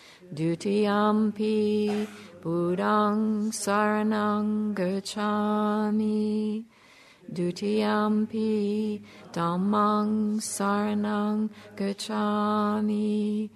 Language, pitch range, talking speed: English, 205-215 Hz, 50 wpm